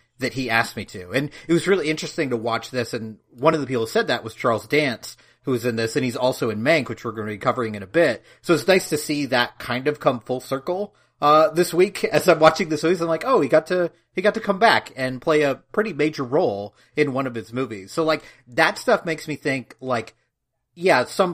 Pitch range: 120-155 Hz